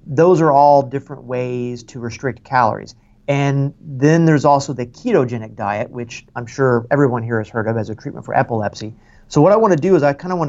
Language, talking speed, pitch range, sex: English, 225 wpm, 115-145 Hz, male